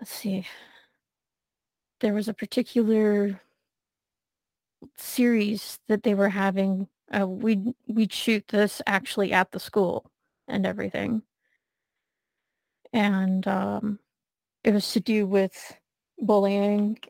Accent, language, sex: American, English, female